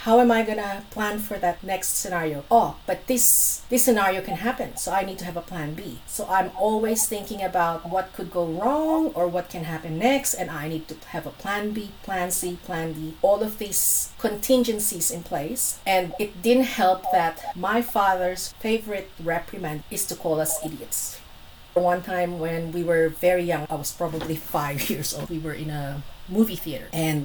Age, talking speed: 40-59, 200 wpm